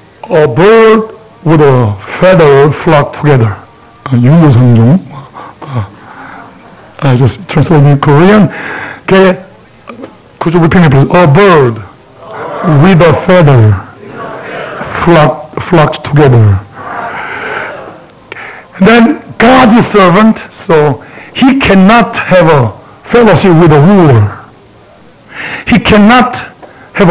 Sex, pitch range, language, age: male, 135-200 Hz, Korean, 60-79